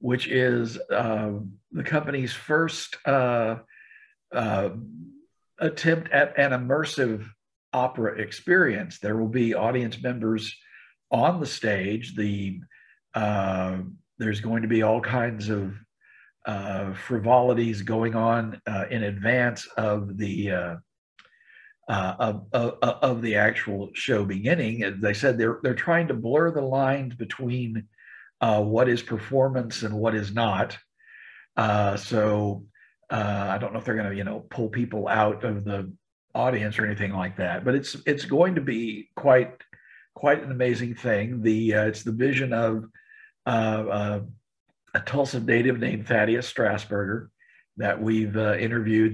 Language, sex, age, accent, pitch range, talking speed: English, male, 50-69, American, 105-125 Hz, 145 wpm